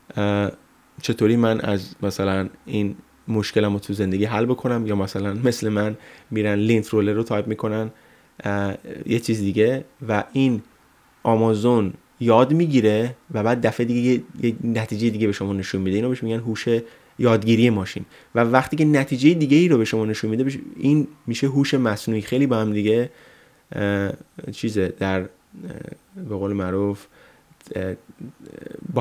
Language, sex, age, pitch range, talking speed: Persian, male, 20-39, 100-120 Hz, 145 wpm